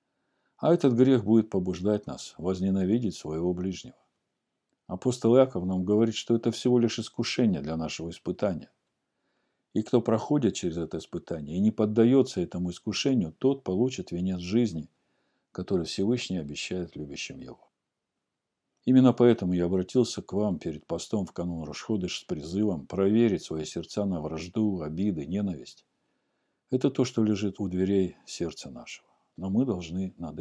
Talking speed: 145 wpm